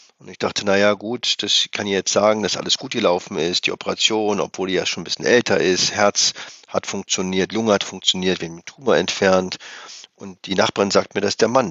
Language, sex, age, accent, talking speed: German, male, 50-69, German, 225 wpm